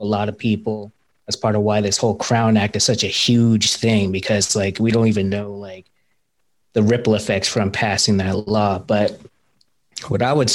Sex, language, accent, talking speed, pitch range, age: male, English, American, 200 wpm, 105-120 Hz, 20-39